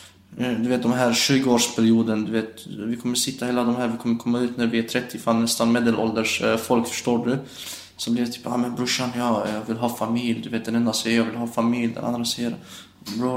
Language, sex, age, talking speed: Swedish, male, 20-39, 240 wpm